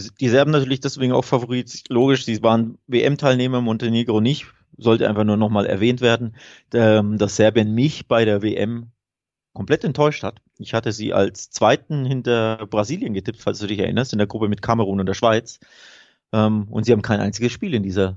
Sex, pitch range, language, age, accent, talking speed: male, 110-135 Hz, German, 30-49, German, 180 wpm